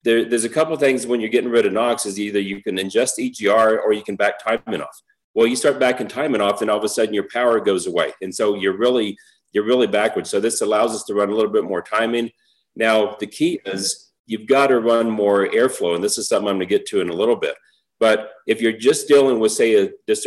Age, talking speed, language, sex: 40-59, 265 wpm, English, male